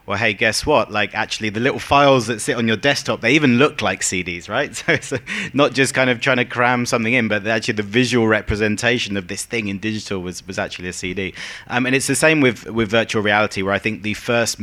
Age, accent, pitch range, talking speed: 30-49, British, 100-115 Hz, 245 wpm